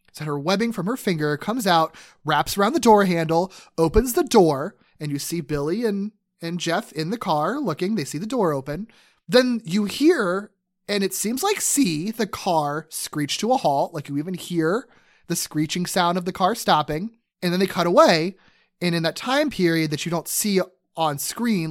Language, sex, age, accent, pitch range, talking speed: English, male, 30-49, American, 160-210 Hz, 200 wpm